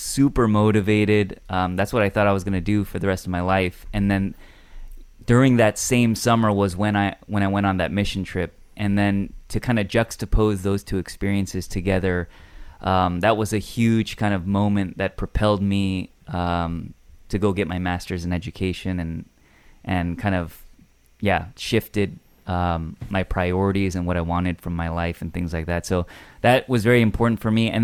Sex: male